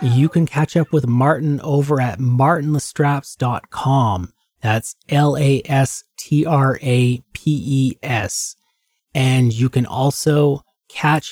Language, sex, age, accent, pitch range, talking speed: English, male, 30-49, American, 115-145 Hz, 85 wpm